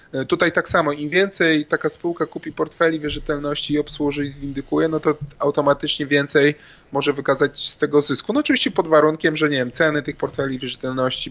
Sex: male